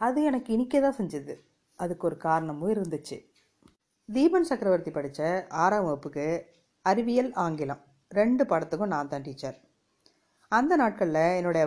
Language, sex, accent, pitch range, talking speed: Tamil, female, native, 155-210 Hz, 120 wpm